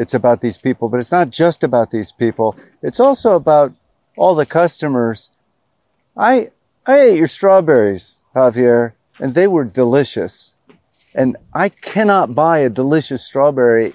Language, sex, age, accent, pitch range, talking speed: English, male, 50-69, American, 115-155 Hz, 145 wpm